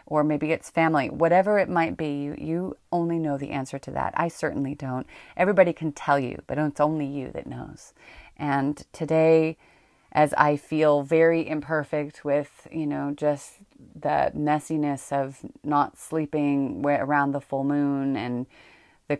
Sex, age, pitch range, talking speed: female, 30-49, 135-155 Hz, 160 wpm